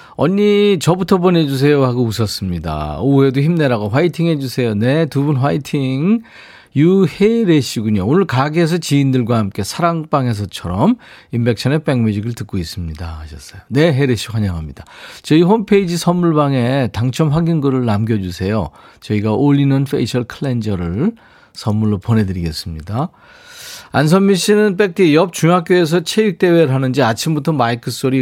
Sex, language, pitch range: male, Korean, 110-170 Hz